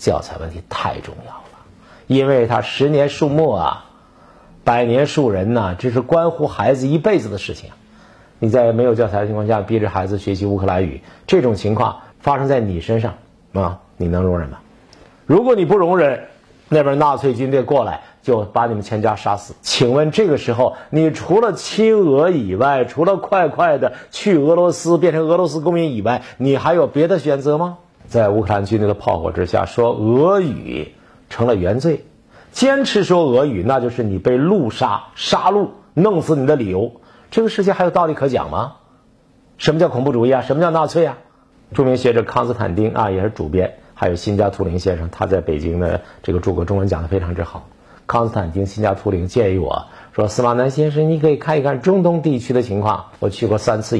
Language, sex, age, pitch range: Chinese, male, 50-69, 100-150 Hz